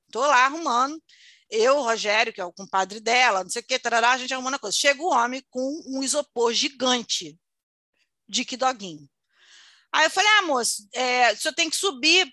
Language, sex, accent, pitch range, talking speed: Portuguese, female, Brazilian, 230-300 Hz, 200 wpm